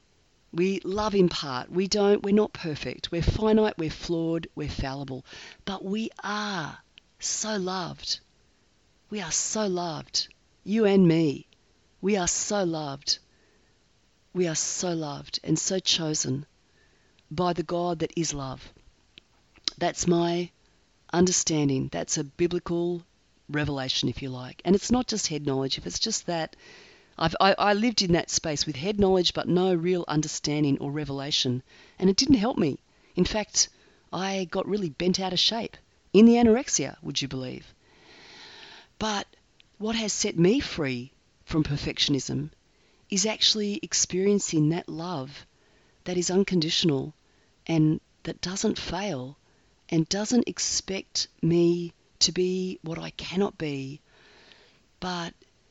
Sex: female